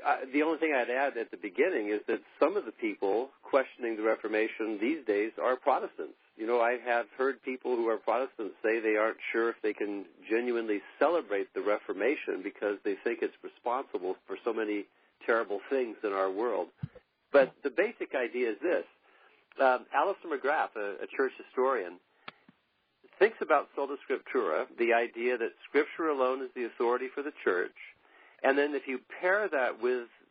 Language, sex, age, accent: English, male, 50-69, American